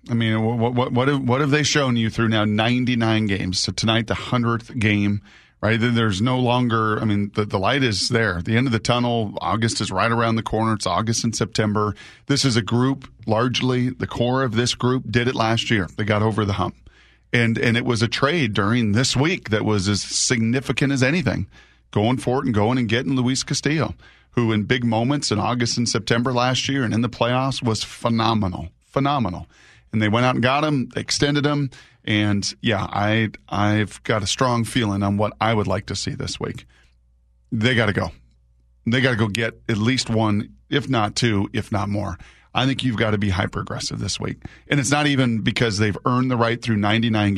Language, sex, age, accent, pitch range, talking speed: English, male, 40-59, American, 105-125 Hz, 220 wpm